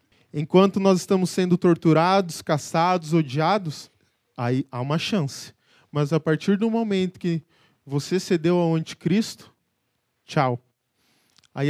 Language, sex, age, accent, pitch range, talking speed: Portuguese, male, 20-39, Brazilian, 145-220 Hz, 120 wpm